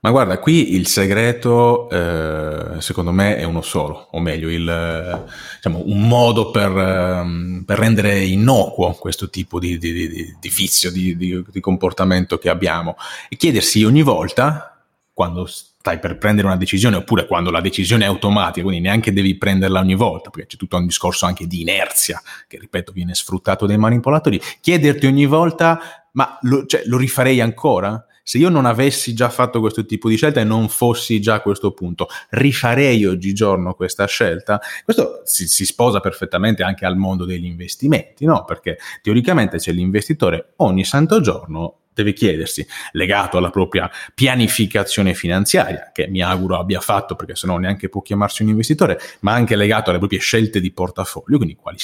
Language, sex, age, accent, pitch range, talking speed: Italian, male, 30-49, native, 90-120 Hz, 170 wpm